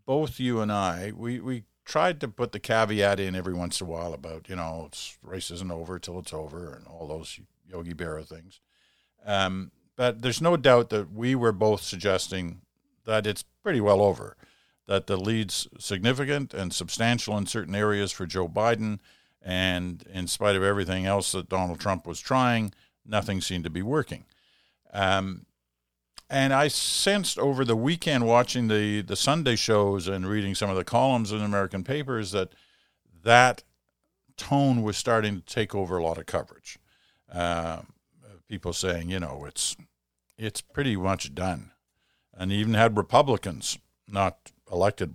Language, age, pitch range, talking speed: English, 50-69, 85-115 Hz, 165 wpm